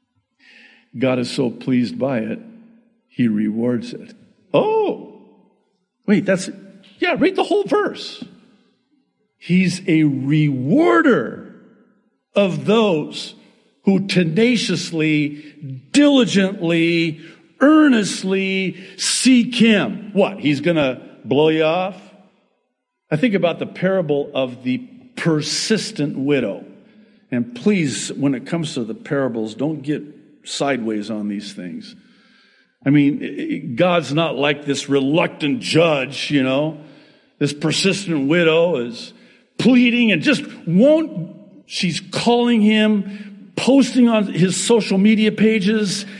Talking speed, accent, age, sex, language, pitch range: 110 wpm, American, 50-69, male, English, 170-240 Hz